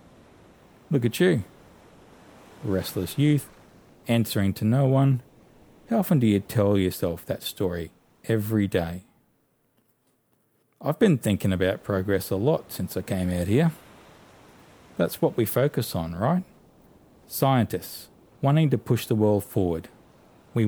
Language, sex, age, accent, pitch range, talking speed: English, male, 40-59, Australian, 95-125 Hz, 130 wpm